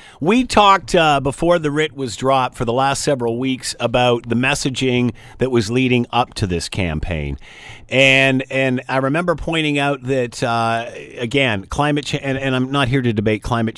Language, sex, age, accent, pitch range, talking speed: English, male, 50-69, American, 110-145 Hz, 185 wpm